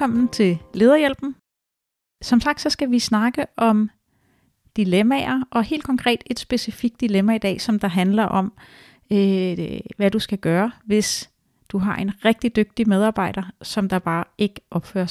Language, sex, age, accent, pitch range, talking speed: Danish, female, 30-49, native, 195-240 Hz, 160 wpm